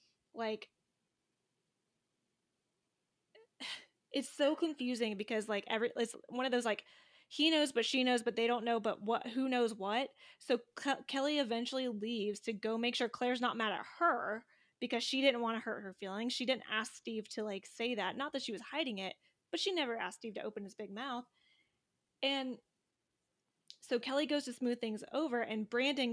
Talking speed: 185 wpm